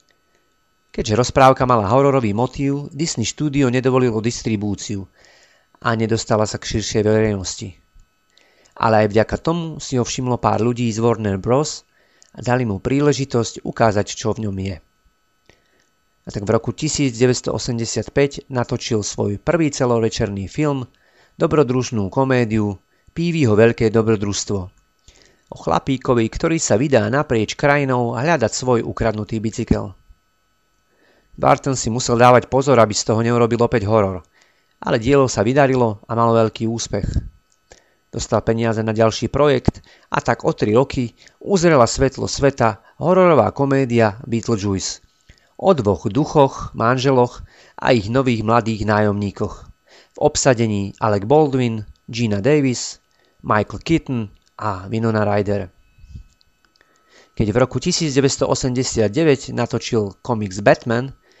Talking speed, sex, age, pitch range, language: 120 wpm, male, 40-59, 105-130 Hz, Slovak